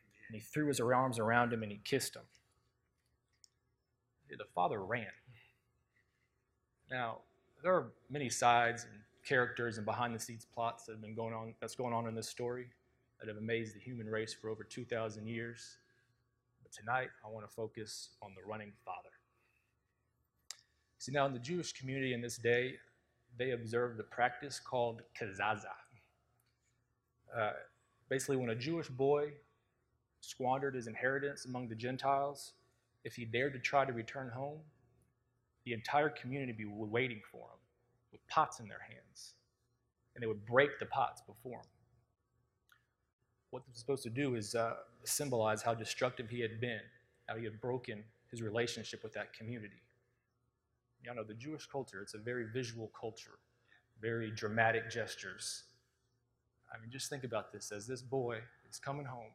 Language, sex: English, male